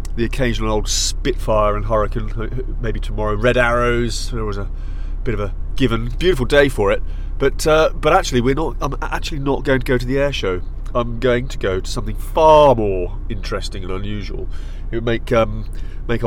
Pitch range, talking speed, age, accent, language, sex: 105-130 Hz, 195 wpm, 30-49, British, English, male